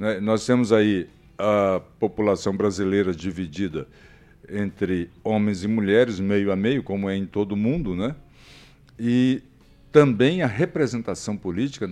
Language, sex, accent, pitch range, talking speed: Portuguese, male, Brazilian, 105-150 Hz, 125 wpm